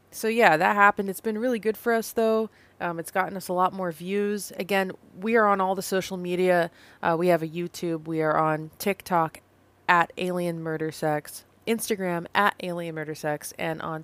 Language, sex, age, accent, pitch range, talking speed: English, female, 20-39, American, 155-190 Hz, 200 wpm